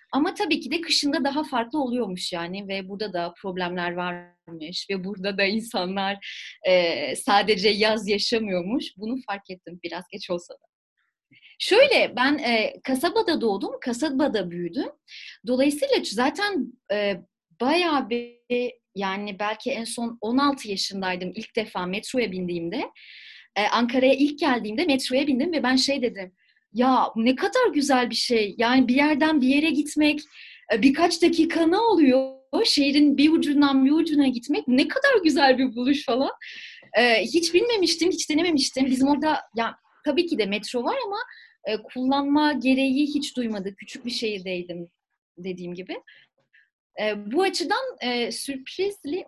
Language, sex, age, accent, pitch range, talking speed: Turkish, female, 30-49, native, 210-295 Hz, 140 wpm